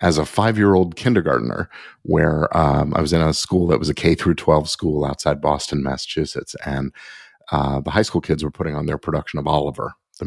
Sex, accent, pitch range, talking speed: male, American, 75-90 Hz, 200 wpm